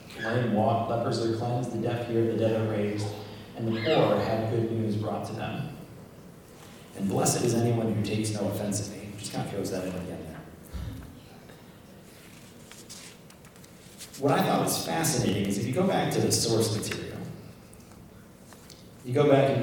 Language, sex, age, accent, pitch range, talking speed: English, male, 30-49, American, 100-115 Hz, 175 wpm